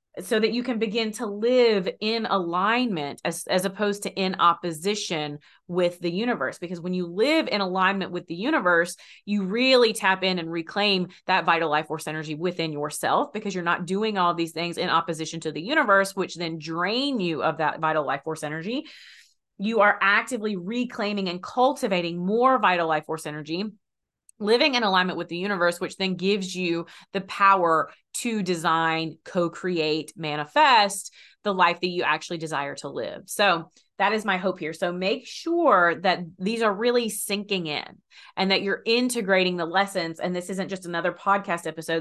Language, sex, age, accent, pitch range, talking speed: English, female, 30-49, American, 170-205 Hz, 180 wpm